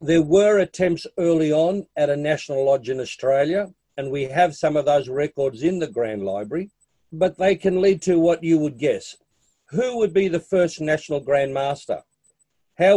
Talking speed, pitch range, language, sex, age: 185 wpm, 140-170 Hz, English, male, 50-69